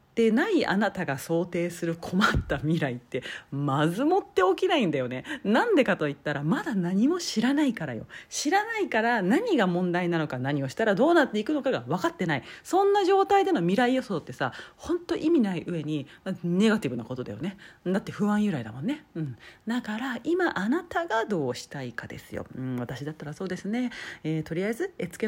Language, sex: Japanese, female